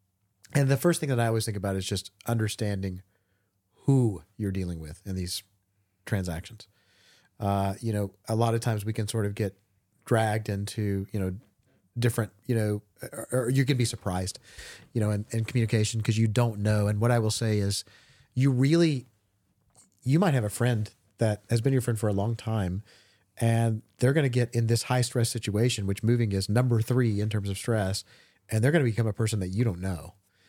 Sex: male